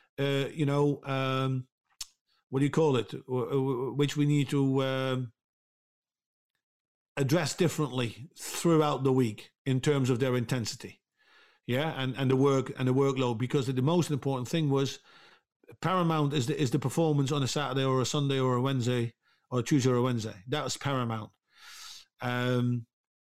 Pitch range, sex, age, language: 130-150 Hz, male, 50-69, Finnish